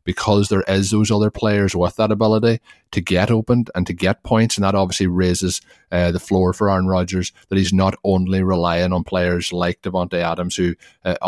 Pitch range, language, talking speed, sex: 90-100 Hz, English, 200 wpm, male